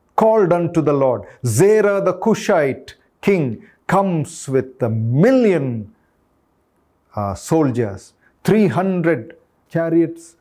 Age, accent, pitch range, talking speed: 40-59, native, 120-165 Hz, 100 wpm